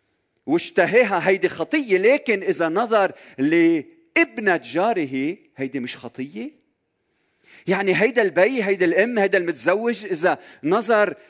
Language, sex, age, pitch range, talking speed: Arabic, male, 40-59, 160-240 Hz, 105 wpm